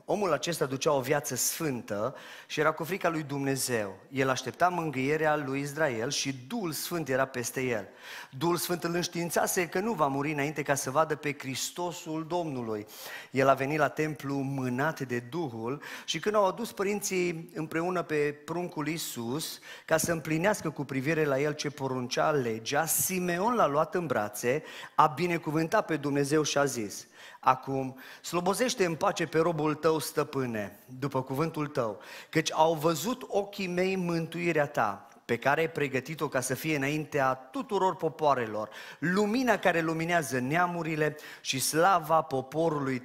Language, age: Romanian, 30-49